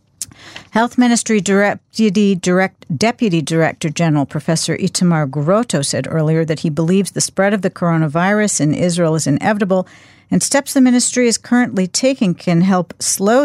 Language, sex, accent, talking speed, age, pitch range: English, female, American, 145 wpm, 50-69, 155-205 Hz